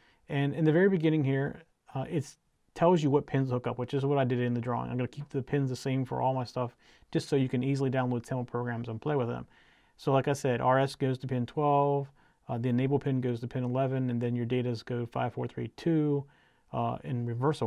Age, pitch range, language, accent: 40-59, 120-140 Hz, English, American